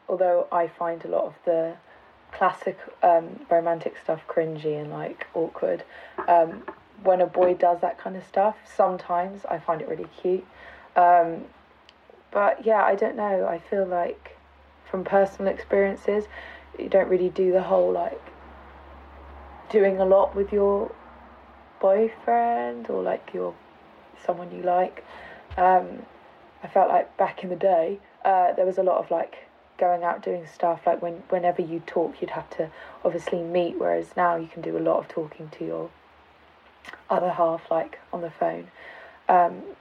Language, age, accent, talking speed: English, 20-39, British, 165 wpm